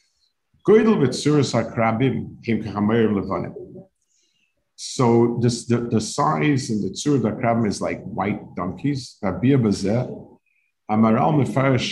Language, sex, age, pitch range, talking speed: English, male, 50-69, 110-140 Hz, 80 wpm